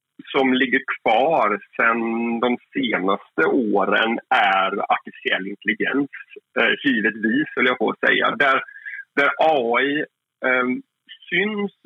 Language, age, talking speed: Swedish, 30-49, 80 wpm